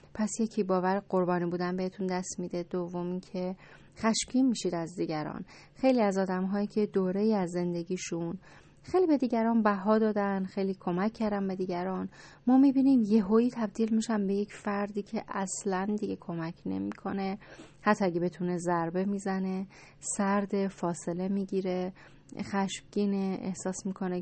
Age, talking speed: 30-49, 140 wpm